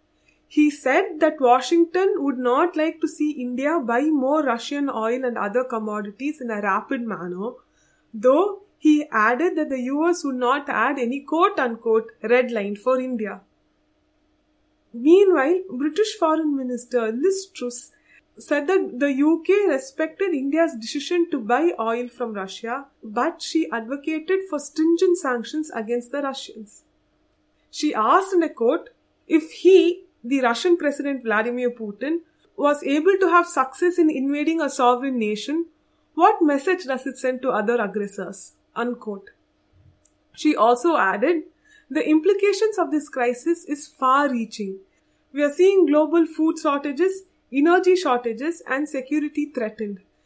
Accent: Indian